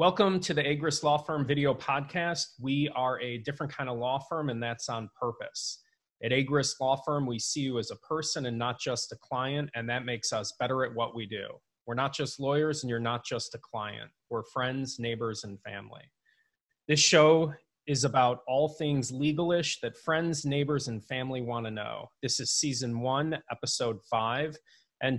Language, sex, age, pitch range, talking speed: English, male, 30-49, 120-145 Hz, 195 wpm